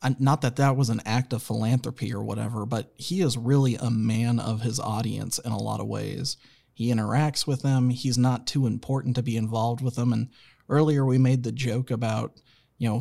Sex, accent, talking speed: male, American, 210 wpm